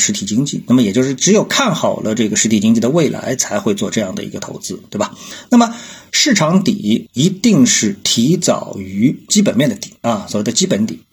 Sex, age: male, 50-69